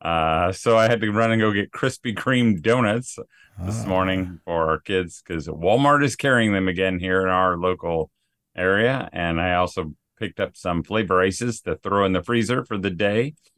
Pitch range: 95-120 Hz